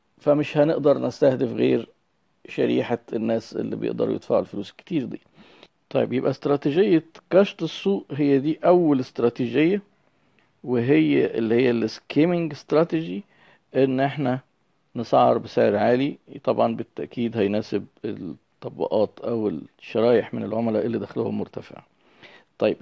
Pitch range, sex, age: 120-165 Hz, male, 50-69